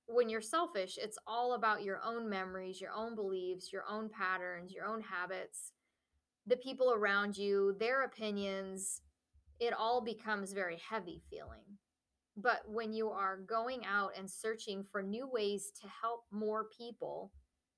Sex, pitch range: female, 190-225 Hz